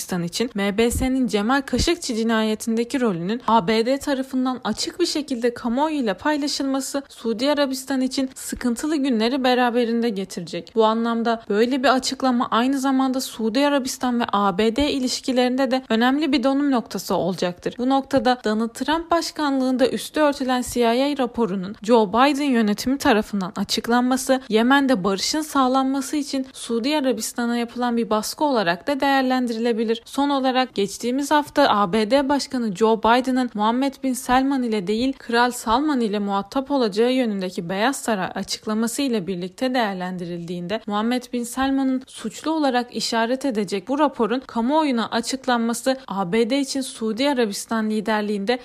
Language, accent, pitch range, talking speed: Turkish, native, 220-270 Hz, 130 wpm